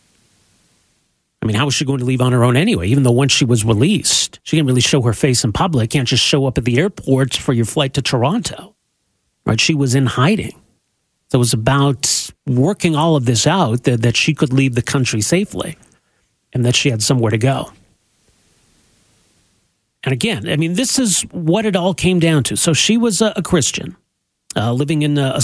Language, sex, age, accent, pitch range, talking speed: English, male, 40-59, American, 120-150 Hz, 210 wpm